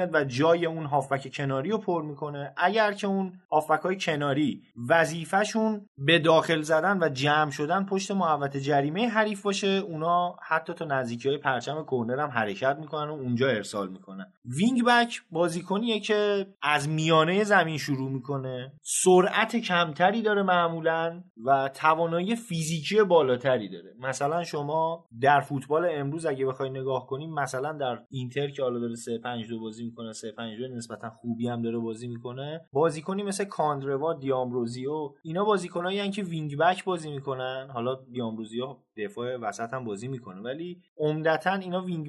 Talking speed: 150 wpm